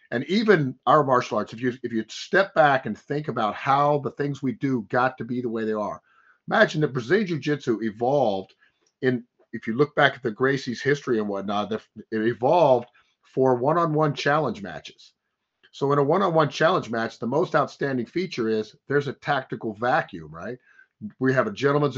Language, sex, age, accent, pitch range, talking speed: English, male, 50-69, American, 125-150 Hz, 185 wpm